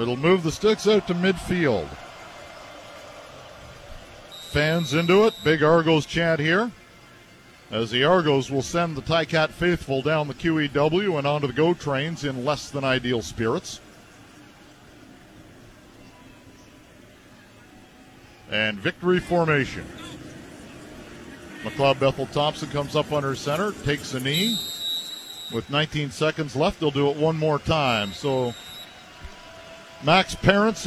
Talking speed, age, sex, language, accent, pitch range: 120 wpm, 50-69, male, English, American, 140-195 Hz